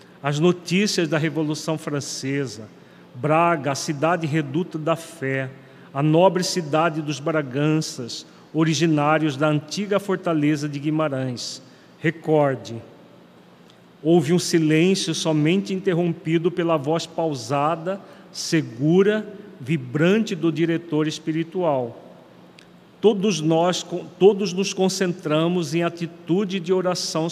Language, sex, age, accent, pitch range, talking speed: Portuguese, male, 40-59, Brazilian, 150-180 Hz, 100 wpm